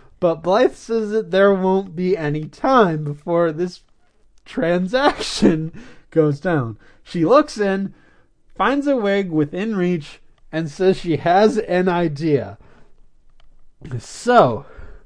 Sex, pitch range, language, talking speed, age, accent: male, 145-210 Hz, English, 115 wpm, 30-49, American